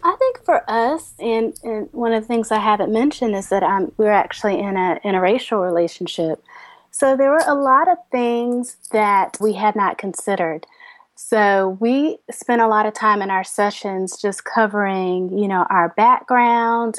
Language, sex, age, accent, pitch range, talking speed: English, female, 30-49, American, 190-235 Hz, 185 wpm